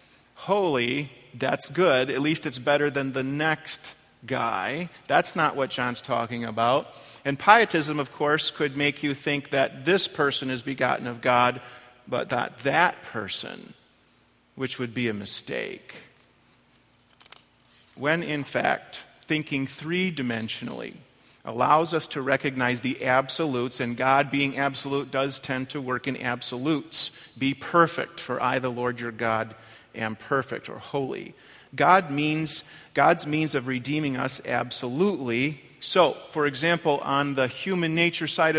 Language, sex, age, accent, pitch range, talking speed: English, male, 40-59, American, 120-150 Hz, 140 wpm